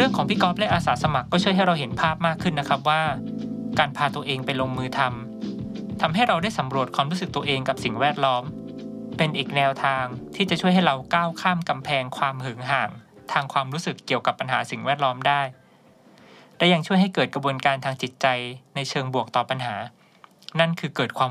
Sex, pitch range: male, 135-185 Hz